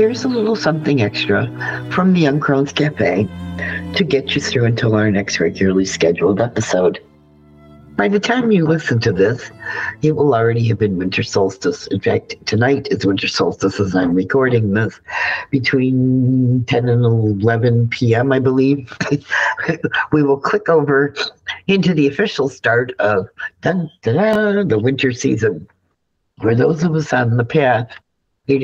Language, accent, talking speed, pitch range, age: English, American, 155 wpm, 105-145 Hz, 50-69